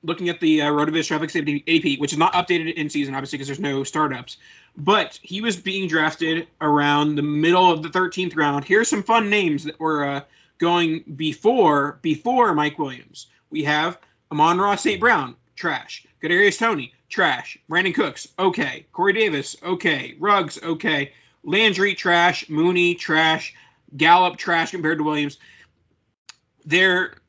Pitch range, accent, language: 145-180 Hz, American, English